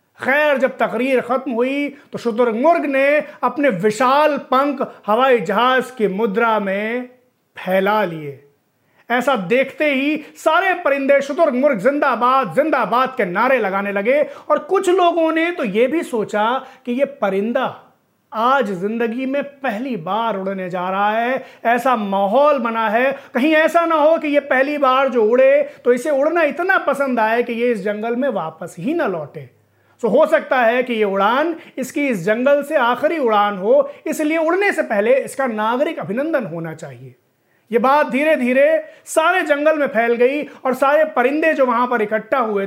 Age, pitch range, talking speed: 30-49, 220-295 Hz, 170 wpm